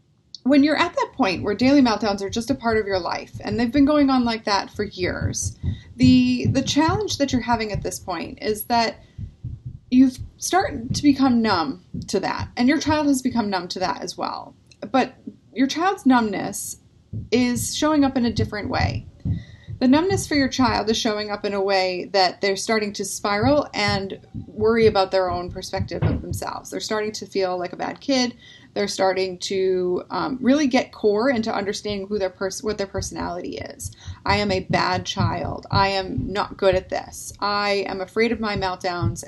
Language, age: English, 30-49